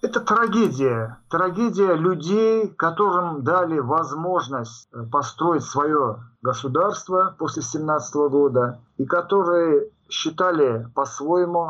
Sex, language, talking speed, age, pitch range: male, Russian, 85 wpm, 50-69, 125-175 Hz